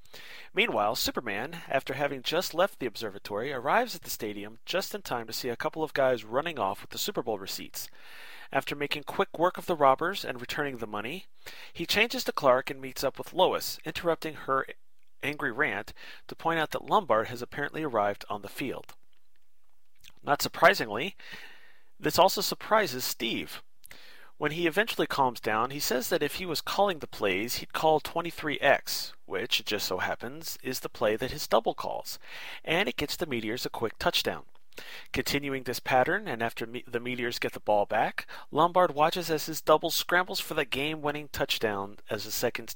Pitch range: 120-170 Hz